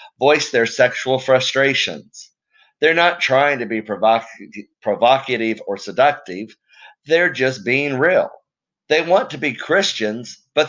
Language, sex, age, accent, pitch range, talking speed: English, male, 50-69, American, 115-150 Hz, 125 wpm